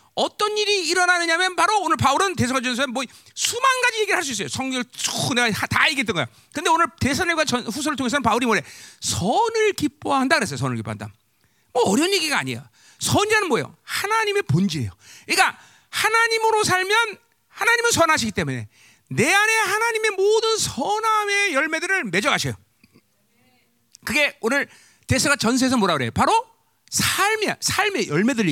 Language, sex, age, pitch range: Korean, male, 40-59, 275-445 Hz